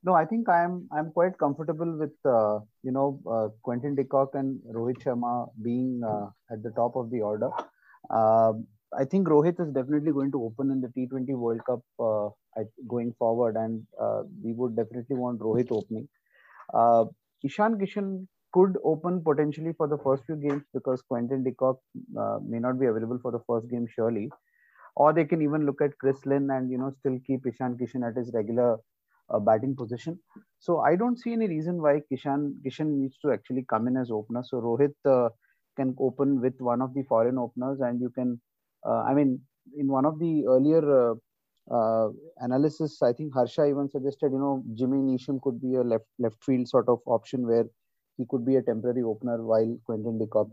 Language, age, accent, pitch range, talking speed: English, 30-49, Indian, 115-145 Hz, 200 wpm